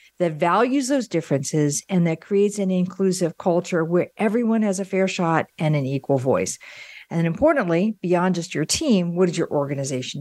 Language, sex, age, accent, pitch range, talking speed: English, female, 50-69, American, 165-215 Hz, 175 wpm